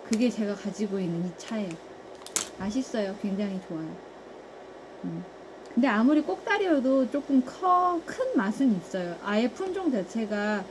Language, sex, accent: Korean, female, native